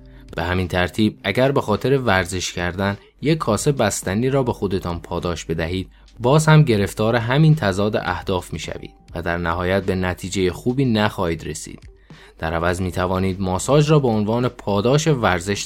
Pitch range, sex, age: 90-115 Hz, male, 20-39